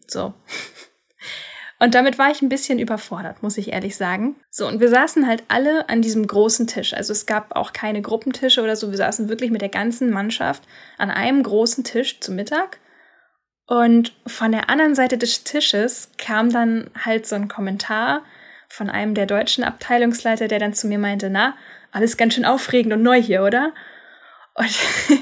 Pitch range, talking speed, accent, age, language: 215-260 Hz, 180 wpm, German, 10-29, German